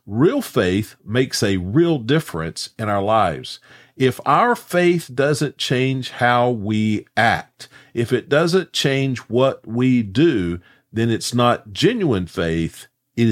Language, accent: English, American